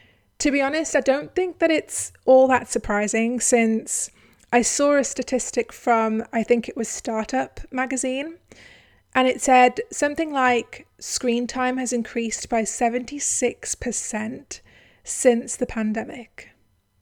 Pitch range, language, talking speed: 225-260 Hz, English, 130 wpm